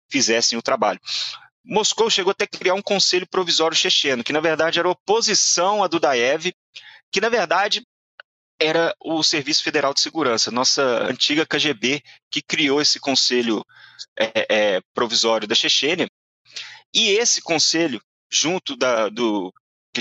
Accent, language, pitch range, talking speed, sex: Brazilian, Portuguese, 130-180 Hz, 140 wpm, male